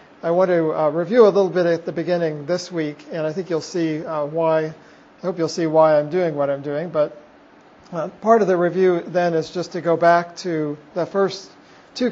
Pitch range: 160-185 Hz